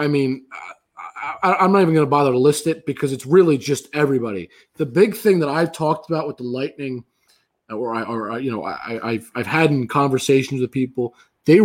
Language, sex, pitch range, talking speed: English, male, 130-170 Hz, 220 wpm